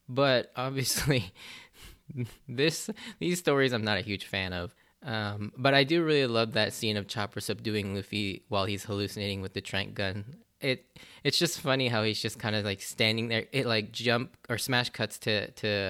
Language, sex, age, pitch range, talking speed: English, male, 10-29, 105-125 Hz, 190 wpm